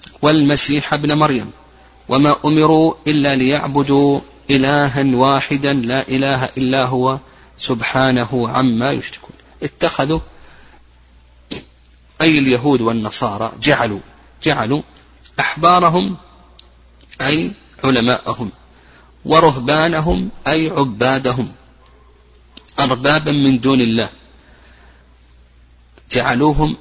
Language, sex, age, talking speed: Arabic, male, 40-59, 75 wpm